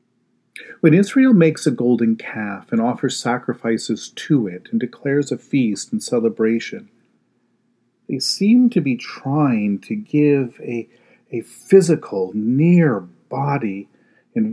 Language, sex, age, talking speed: English, male, 40-59, 125 wpm